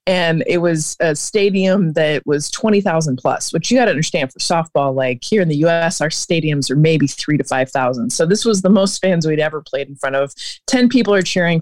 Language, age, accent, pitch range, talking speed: English, 20-39, American, 160-215 Hz, 220 wpm